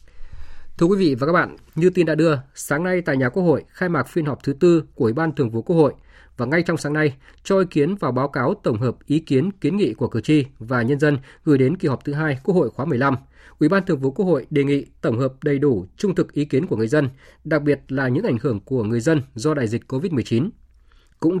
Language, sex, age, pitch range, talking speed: Vietnamese, male, 20-39, 125-160 Hz, 265 wpm